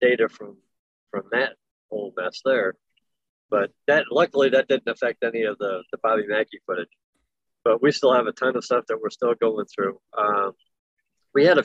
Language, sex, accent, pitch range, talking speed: English, male, American, 115-195 Hz, 190 wpm